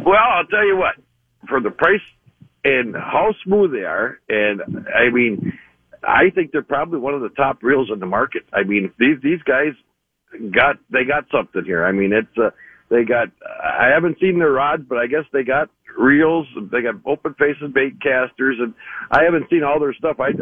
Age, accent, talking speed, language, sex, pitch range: 60-79, American, 205 wpm, English, male, 120-155 Hz